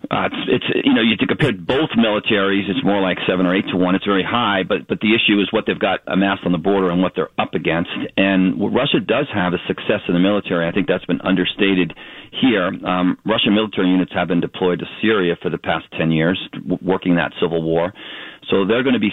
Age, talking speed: 40-59, 245 wpm